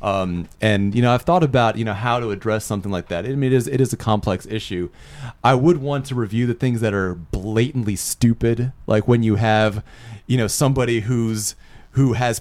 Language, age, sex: English, 30-49, male